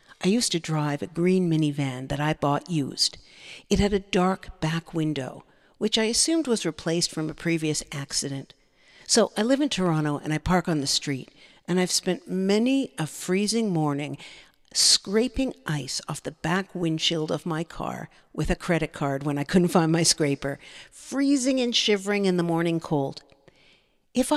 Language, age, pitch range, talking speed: English, 50-69, 155-200 Hz, 175 wpm